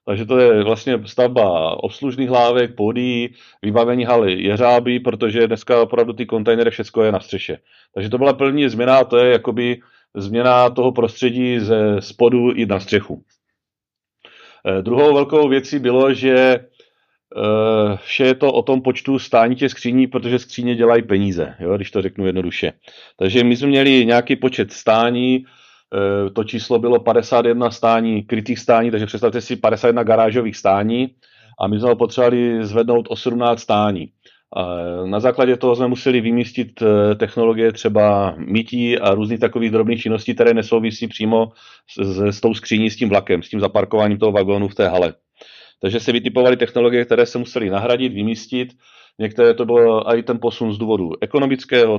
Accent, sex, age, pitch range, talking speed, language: native, male, 40-59, 110-125 Hz, 160 wpm, Czech